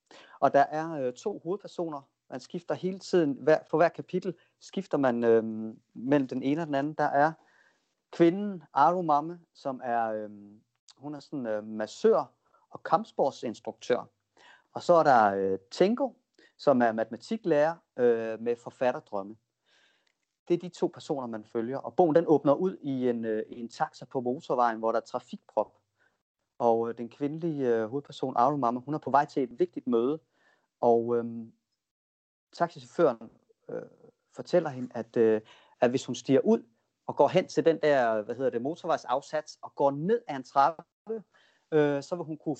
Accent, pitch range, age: native, 120-170 Hz, 30-49